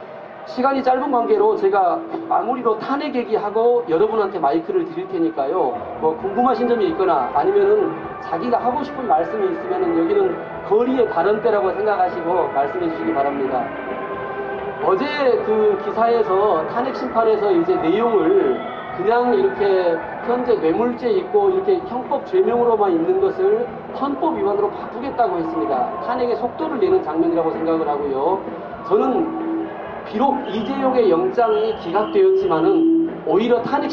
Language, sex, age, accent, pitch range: Korean, male, 40-59, native, 235-380 Hz